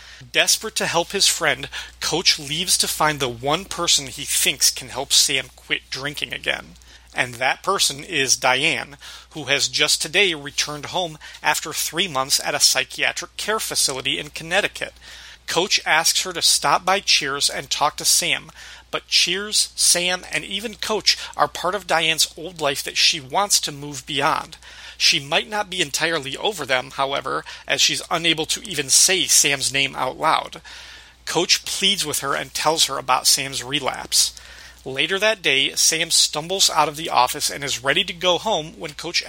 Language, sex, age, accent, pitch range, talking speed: English, male, 40-59, American, 140-180 Hz, 175 wpm